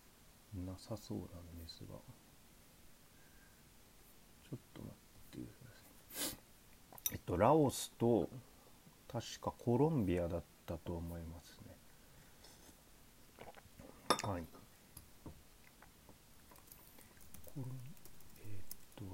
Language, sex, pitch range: Japanese, male, 80-110 Hz